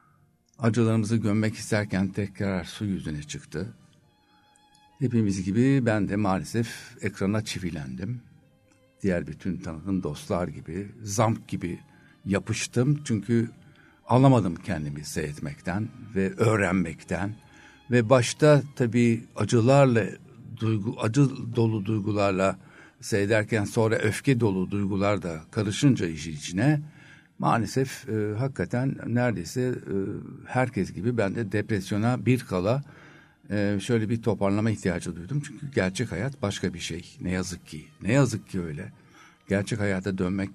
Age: 60-79